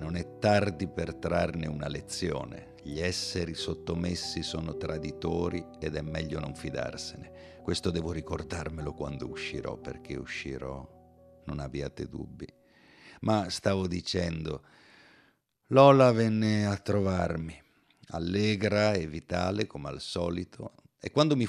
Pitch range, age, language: 75-100 Hz, 50-69, Italian